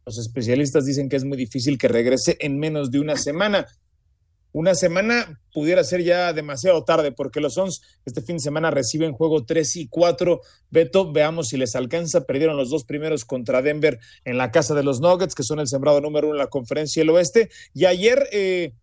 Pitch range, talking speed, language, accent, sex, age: 140-180 Hz, 205 wpm, Spanish, Mexican, male, 40-59